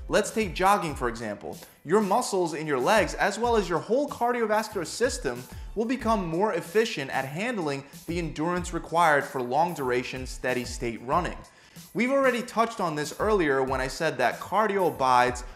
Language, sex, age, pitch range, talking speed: English, male, 20-39, 130-195 Hz, 160 wpm